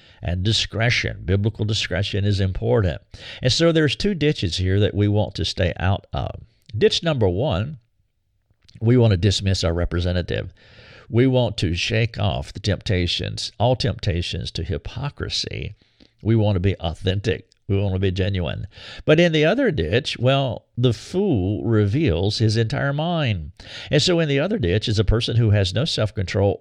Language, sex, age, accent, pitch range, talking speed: English, male, 50-69, American, 95-120 Hz, 170 wpm